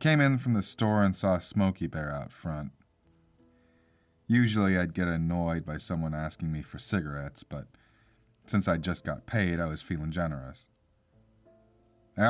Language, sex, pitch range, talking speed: English, male, 80-110 Hz, 160 wpm